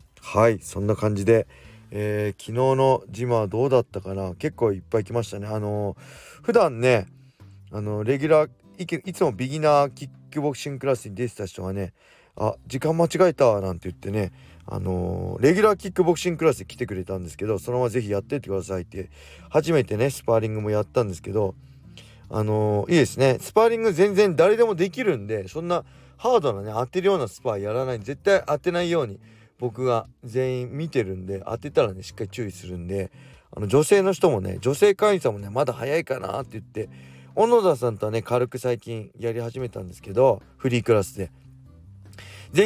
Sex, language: male, Japanese